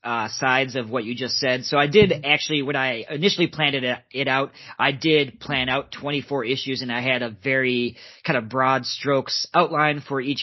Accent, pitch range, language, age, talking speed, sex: American, 120-140 Hz, English, 30-49, 215 wpm, male